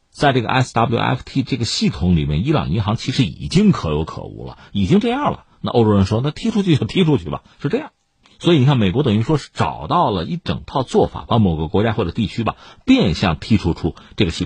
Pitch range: 90-145 Hz